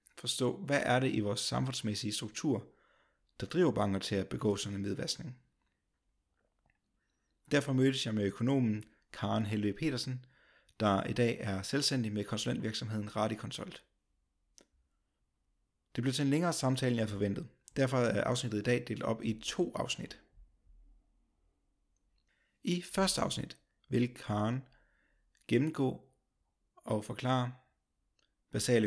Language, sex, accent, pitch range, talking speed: Danish, male, native, 105-130 Hz, 125 wpm